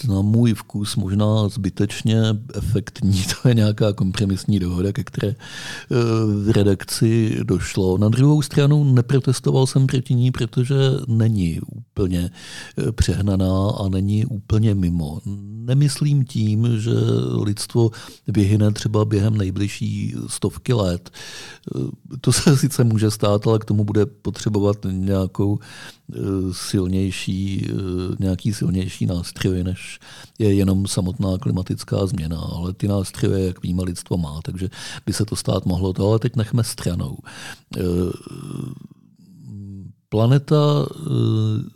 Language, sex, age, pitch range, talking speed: Czech, male, 50-69, 95-125 Hz, 115 wpm